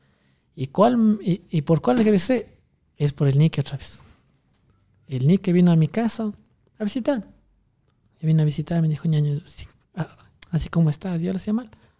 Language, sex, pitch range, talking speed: Spanish, male, 145-170 Hz, 175 wpm